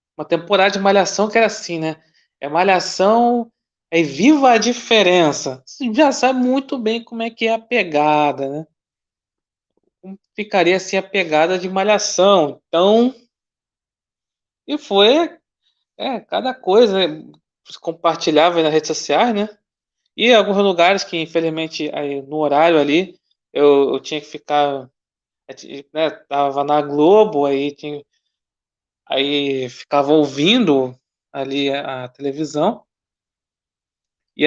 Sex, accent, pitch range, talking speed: male, Brazilian, 145-205 Hz, 120 wpm